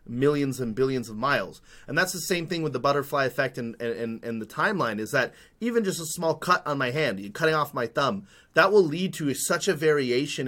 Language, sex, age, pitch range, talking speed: English, male, 30-49, 125-165 Hz, 235 wpm